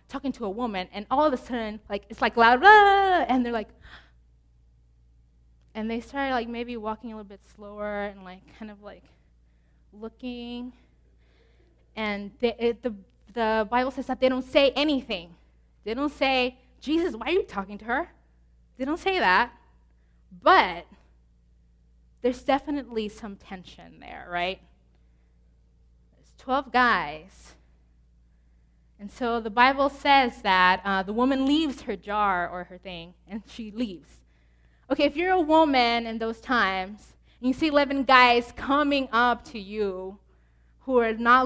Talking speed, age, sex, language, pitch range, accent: 155 wpm, 20-39, female, English, 175-255 Hz, American